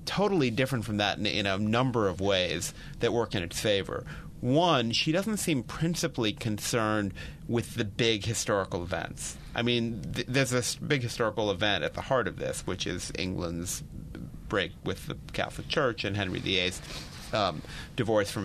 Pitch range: 100-125 Hz